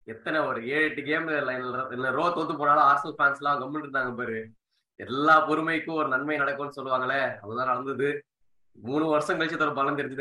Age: 20-39